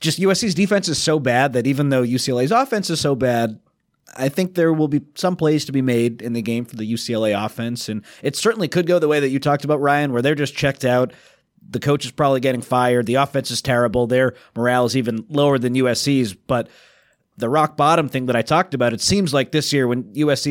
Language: English